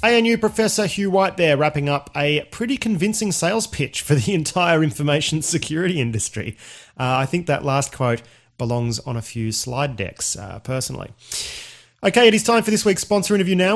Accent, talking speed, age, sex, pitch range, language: Australian, 185 wpm, 30-49, male, 120-175 Hz, English